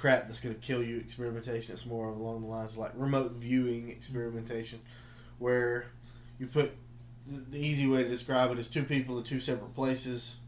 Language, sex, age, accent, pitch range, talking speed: English, male, 20-39, American, 120-130 Hz, 190 wpm